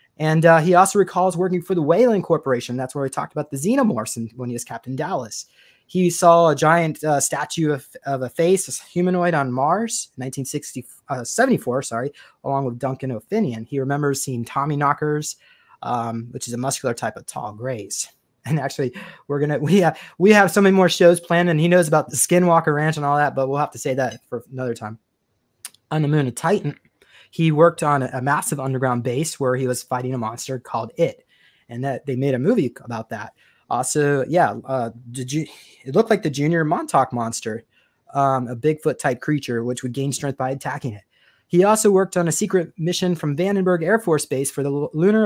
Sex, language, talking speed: male, English, 205 wpm